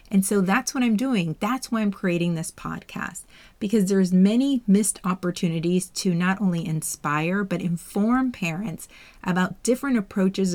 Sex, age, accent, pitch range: female, 40-59, American, 180-235 Hz